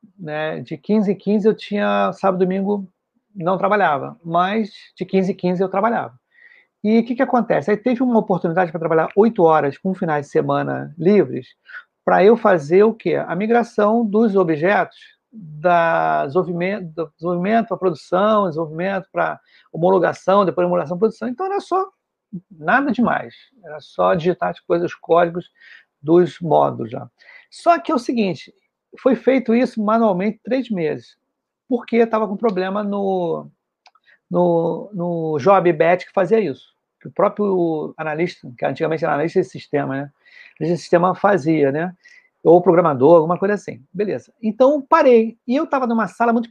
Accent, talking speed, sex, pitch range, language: Brazilian, 165 wpm, male, 175-235 Hz, Portuguese